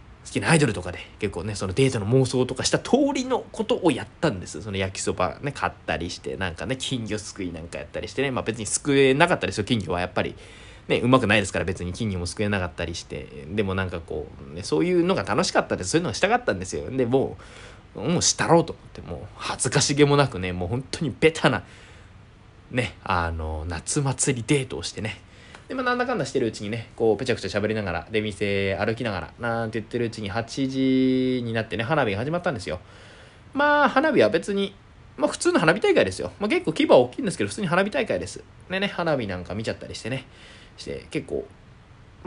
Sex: male